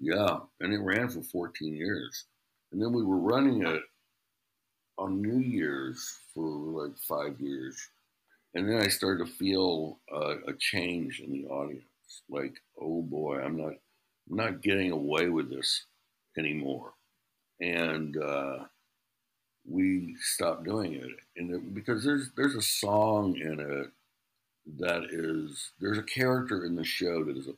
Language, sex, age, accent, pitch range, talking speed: English, male, 60-79, American, 80-105 Hz, 150 wpm